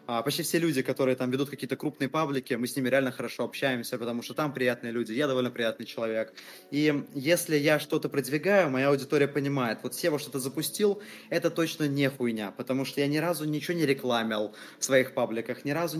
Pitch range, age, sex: 125-150 Hz, 20-39, male